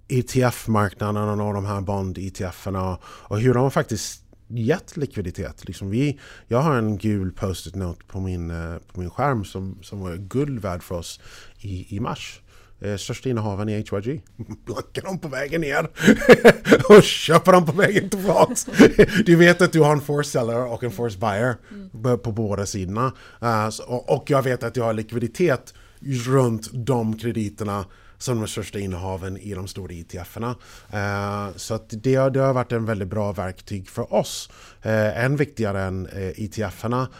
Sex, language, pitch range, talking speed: male, Swedish, 100-125 Hz, 160 wpm